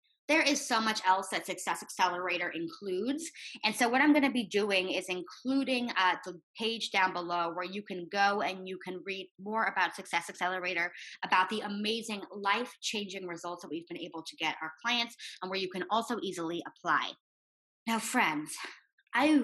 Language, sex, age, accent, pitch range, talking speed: English, female, 20-39, American, 170-235 Hz, 180 wpm